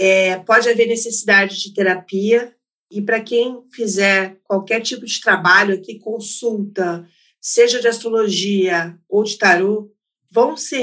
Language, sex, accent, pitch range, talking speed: Portuguese, female, Brazilian, 210-265 Hz, 125 wpm